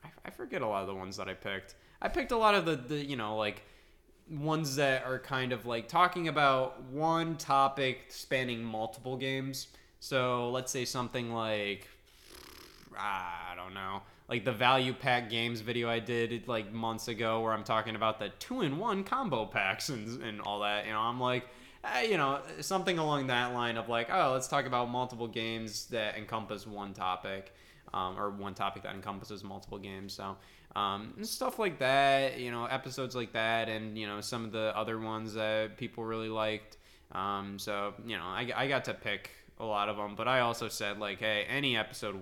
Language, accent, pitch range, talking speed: English, American, 100-125 Hz, 200 wpm